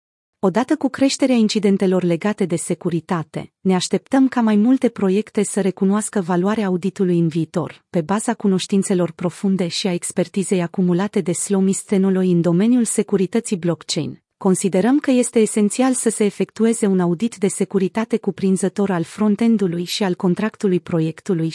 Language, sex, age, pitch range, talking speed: Romanian, female, 30-49, 175-215 Hz, 145 wpm